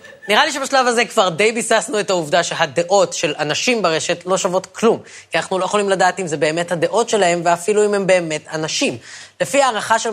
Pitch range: 175-230 Hz